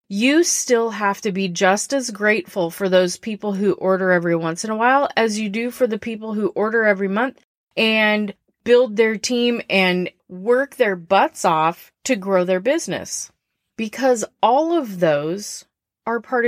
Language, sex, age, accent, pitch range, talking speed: English, female, 30-49, American, 185-240 Hz, 170 wpm